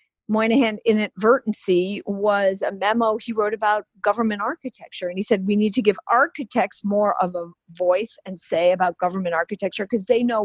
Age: 40-59